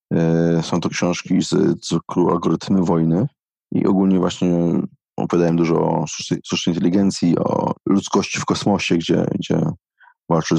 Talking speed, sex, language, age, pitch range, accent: 125 wpm, male, Polish, 30-49, 85-95 Hz, native